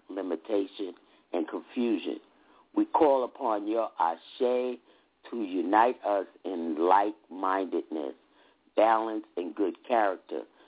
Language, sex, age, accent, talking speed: English, male, 50-69, American, 95 wpm